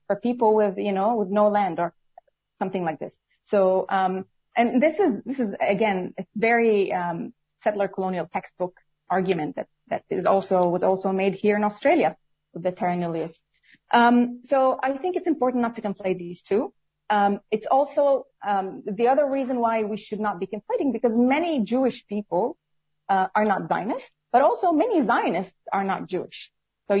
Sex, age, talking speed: female, 30-49, 180 wpm